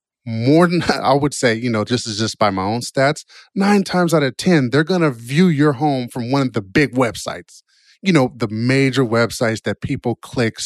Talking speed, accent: 220 wpm, American